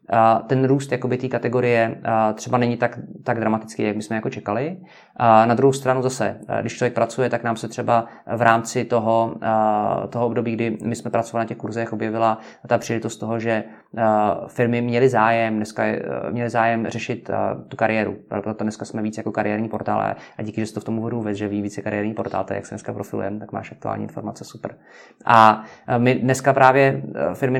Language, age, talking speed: Czech, 20-39, 185 wpm